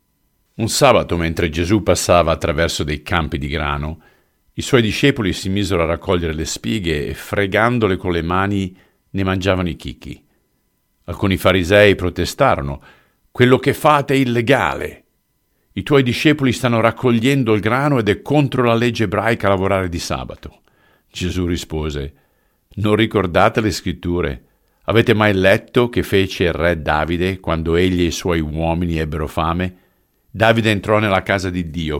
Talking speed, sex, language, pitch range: 150 wpm, male, Italian, 85-110 Hz